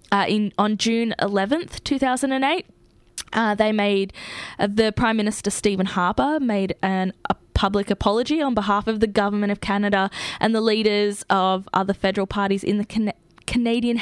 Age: 10-29